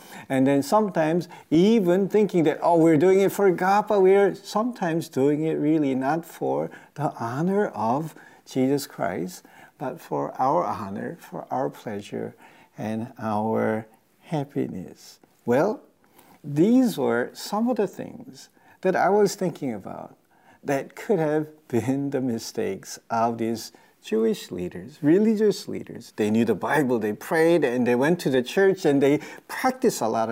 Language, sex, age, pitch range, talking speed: English, male, 50-69, 120-175 Hz, 150 wpm